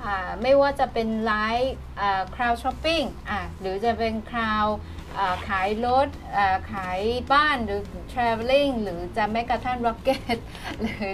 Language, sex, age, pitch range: Thai, female, 20-39, 215-260 Hz